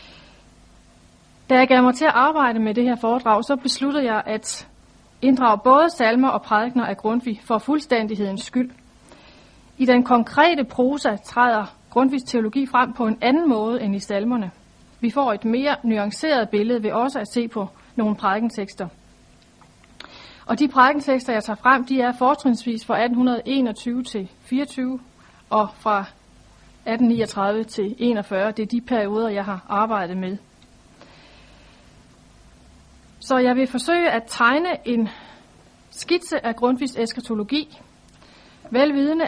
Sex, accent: female, native